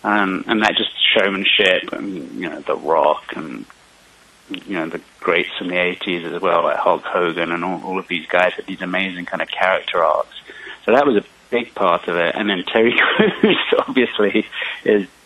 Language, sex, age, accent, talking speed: English, male, 30-49, British, 195 wpm